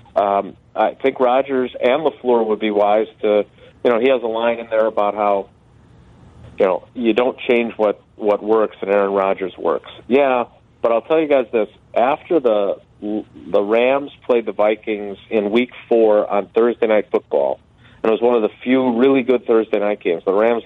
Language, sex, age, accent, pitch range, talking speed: English, male, 40-59, American, 110-135 Hz, 195 wpm